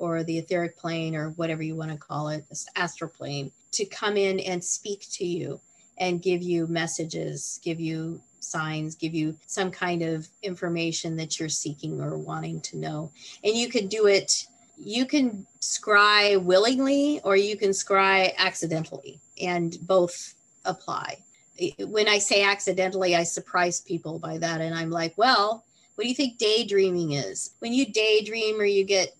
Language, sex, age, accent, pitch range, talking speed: English, female, 30-49, American, 165-205 Hz, 170 wpm